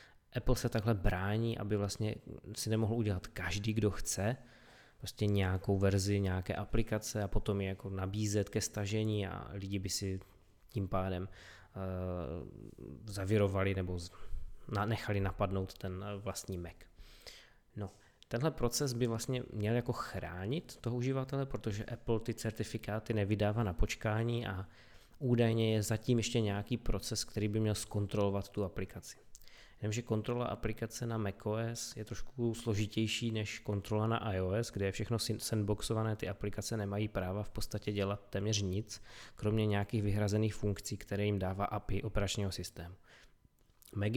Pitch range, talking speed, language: 100-115 Hz, 145 wpm, Czech